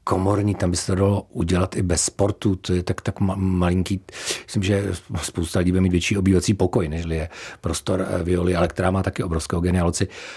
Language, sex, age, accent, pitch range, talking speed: Czech, male, 40-59, native, 95-120 Hz, 190 wpm